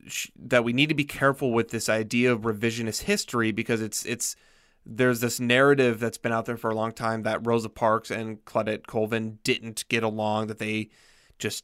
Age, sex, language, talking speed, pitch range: 20-39, male, English, 195 wpm, 110-125 Hz